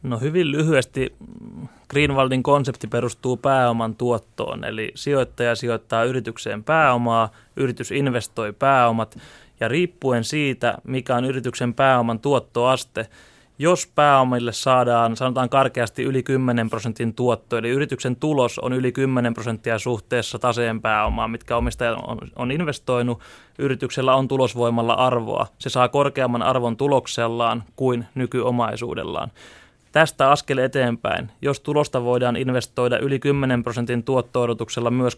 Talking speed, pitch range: 120 wpm, 120-135 Hz